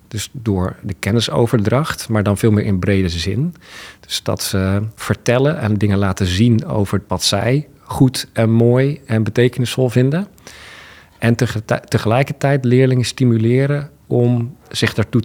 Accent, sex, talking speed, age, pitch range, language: Dutch, male, 140 wpm, 50-69, 100-130 Hz, Dutch